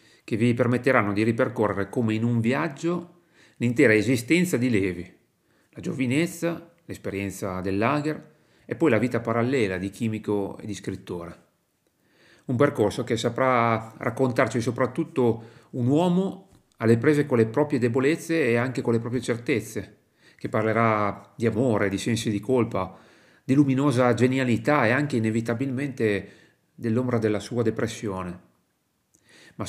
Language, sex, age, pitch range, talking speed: Italian, male, 40-59, 110-135 Hz, 135 wpm